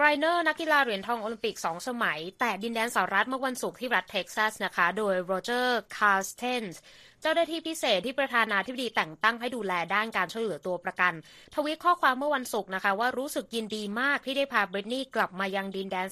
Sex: female